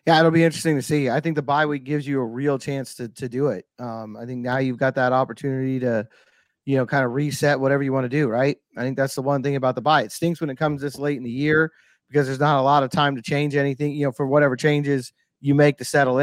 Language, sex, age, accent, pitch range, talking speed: English, male, 30-49, American, 135-150 Hz, 290 wpm